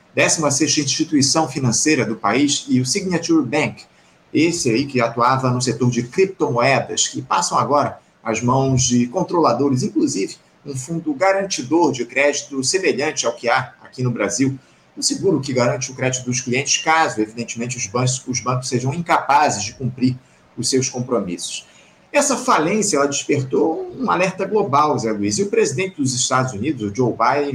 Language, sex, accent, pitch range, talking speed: Portuguese, male, Brazilian, 125-160 Hz, 165 wpm